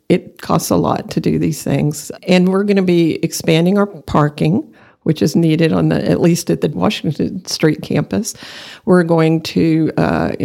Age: 50-69